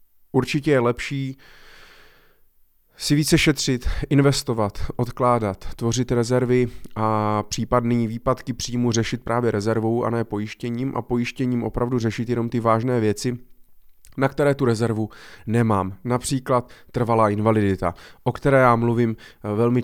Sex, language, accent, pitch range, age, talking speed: male, Czech, native, 110-130 Hz, 20-39, 125 wpm